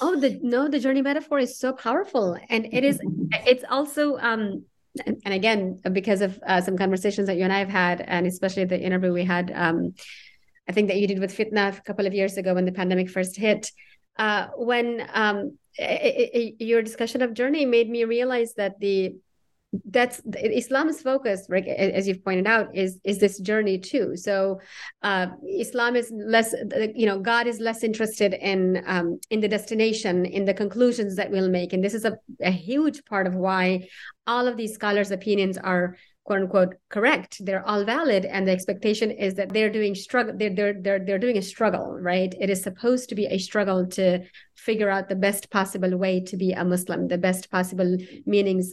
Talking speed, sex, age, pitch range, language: 195 wpm, female, 30-49, 190-225 Hz, English